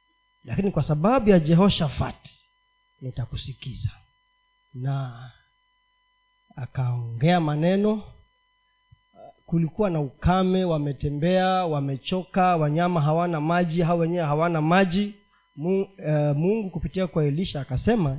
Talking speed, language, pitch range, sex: 95 wpm, Swahili, 140-215 Hz, male